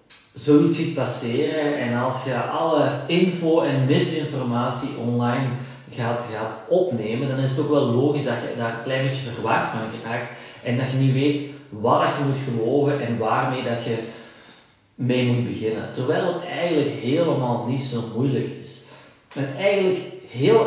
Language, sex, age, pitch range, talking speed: Dutch, male, 30-49, 115-145 Hz, 160 wpm